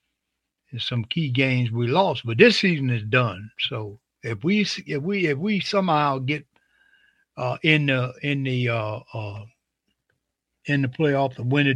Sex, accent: male, American